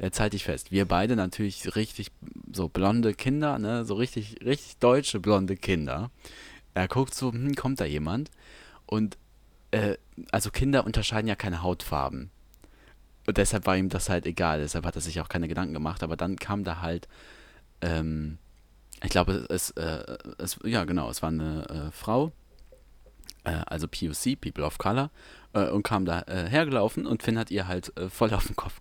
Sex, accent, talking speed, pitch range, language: male, German, 180 wpm, 90-115 Hz, German